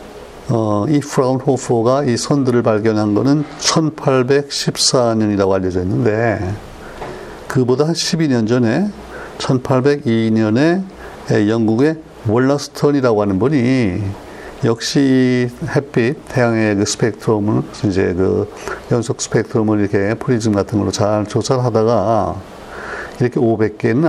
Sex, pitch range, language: male, 105-140 Hz, Korean